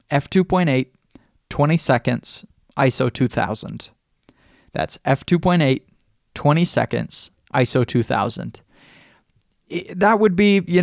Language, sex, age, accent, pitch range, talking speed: English, male, 20-39, American, 125-170 Hz, 85 wpm